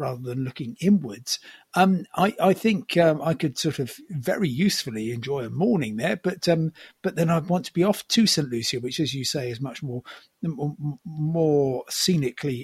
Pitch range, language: 140-185 Hz, English